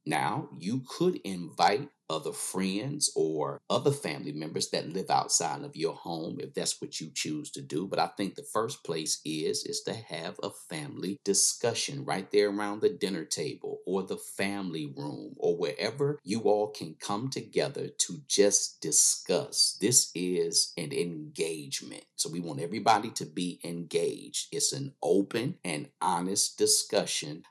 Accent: American